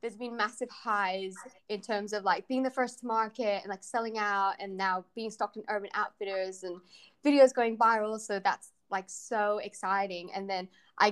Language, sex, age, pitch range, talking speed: English, female, 10-29, 190-235 Hz, 195 wpm